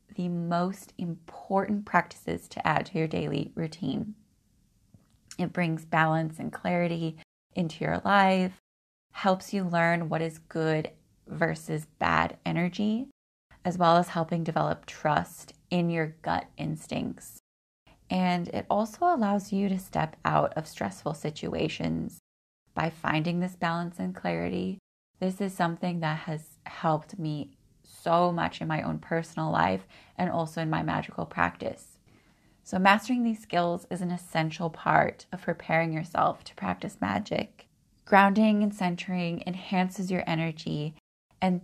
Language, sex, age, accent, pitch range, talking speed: English, female, 20-39, American, 160-185 Hz, 135 wpm